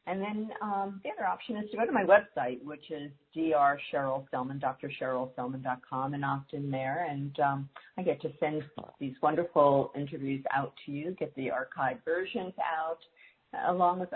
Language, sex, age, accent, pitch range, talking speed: English, female, 50-69, American, 145-195 Hz, 165 wpm